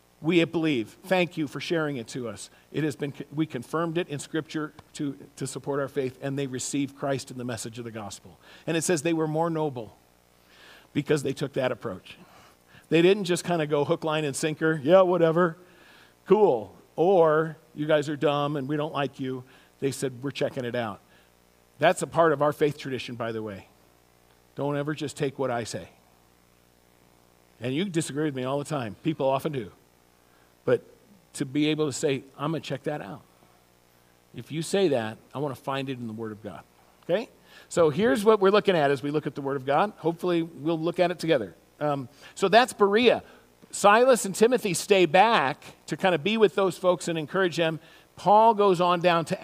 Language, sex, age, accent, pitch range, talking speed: English, male, 50-69, American, 120-180 Hz, 210 wpm